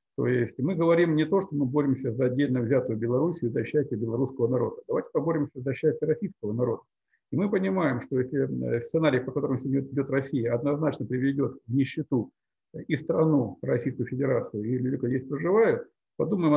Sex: male